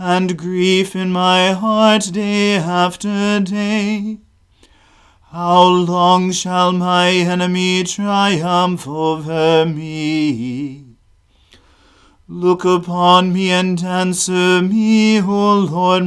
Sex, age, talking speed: male, 40-59, 90 wpm